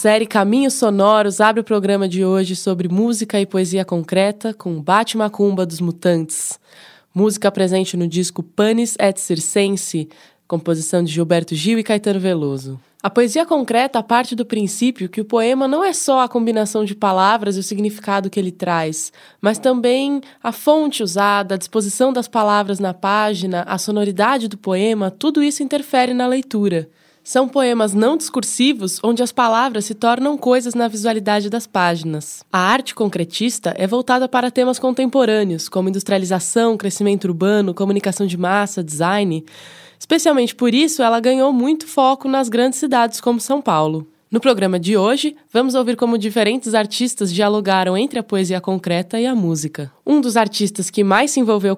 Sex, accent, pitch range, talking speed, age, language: female, Brazilian, 185-245 Hz, 165 wpm, 20-39, Portuguese